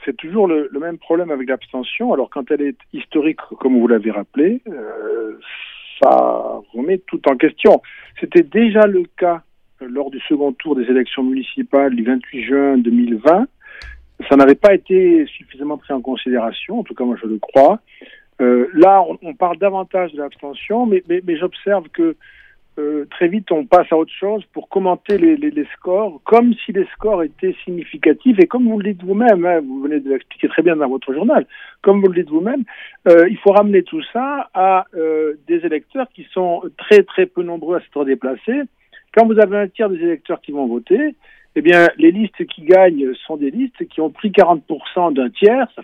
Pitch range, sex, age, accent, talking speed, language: 145-230 Hz, male, 50-69, French, 200 wpm, French